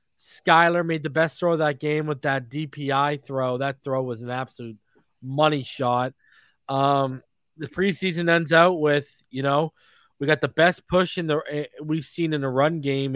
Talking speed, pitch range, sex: 180 wpm, 135-165 Hz, male